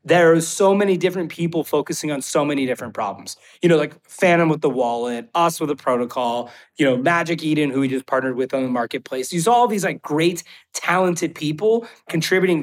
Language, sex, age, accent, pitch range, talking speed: English, male, 30-49, American, 130-170 Hz, 205 wpm